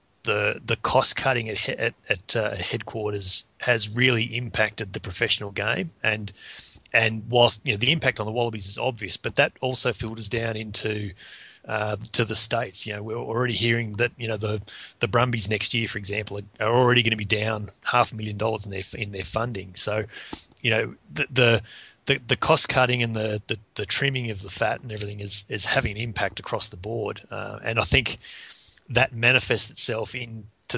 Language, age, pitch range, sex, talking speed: English, 30-49, 105-120 Hz, male, 205 wpm